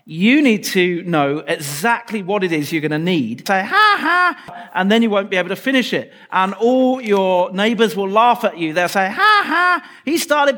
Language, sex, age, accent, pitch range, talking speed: English, male, 40-59, British, 165-230 Hz, 215 wpm